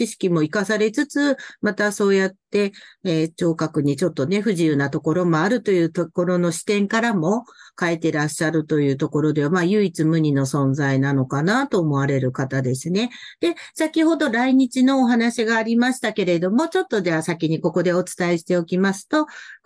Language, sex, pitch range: Japanese, female, 160-235 Hz